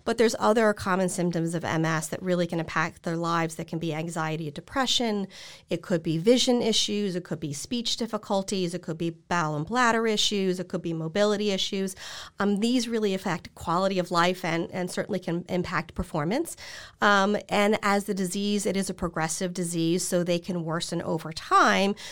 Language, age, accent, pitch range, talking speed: English, 40-59, American, 165-200 Hz, 190 wpm